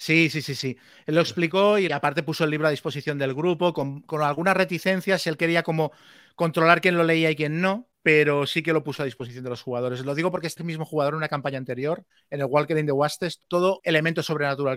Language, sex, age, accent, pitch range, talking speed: Spanish, male, 30-49, Spanish, 140-175 Hz, 240 wpm